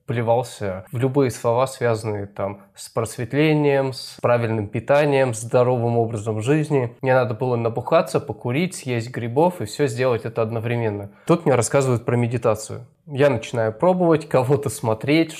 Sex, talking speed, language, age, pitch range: male, 135 wpm, Russian, 20-39, 115-140 Hz